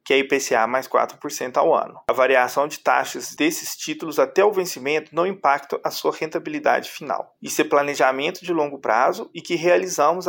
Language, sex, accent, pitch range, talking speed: Portuguese, male, Brazilian, 140-195 Hz, 180 wpm